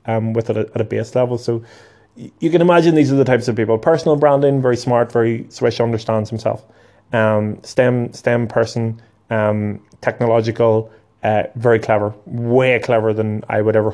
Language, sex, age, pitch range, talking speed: English, male, 20-39, 110-130 Hz, 175 wpm